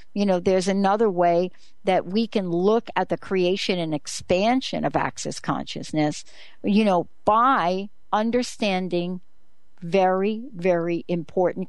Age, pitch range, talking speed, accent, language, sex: 60-79, 175-225 Hz, 125 wpm, American, English, female